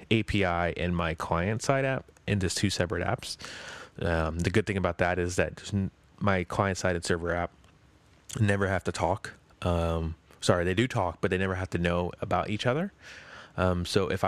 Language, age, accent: English, 20-39, American